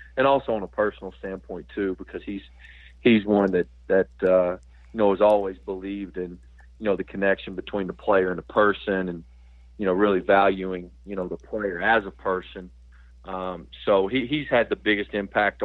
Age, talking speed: 40-59, 190 wpm